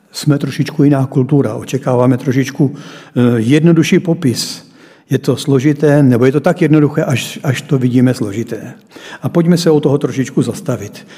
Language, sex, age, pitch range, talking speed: Czech, male, 60-79, 125-150 Hz, 150 wpm